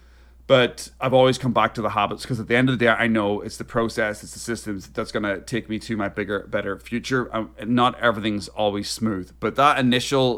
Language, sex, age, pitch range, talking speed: English, male, 30-49, 95-125 Hz, 230 wpm